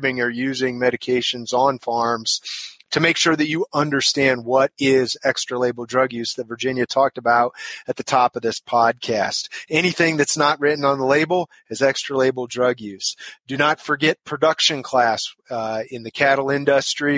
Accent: American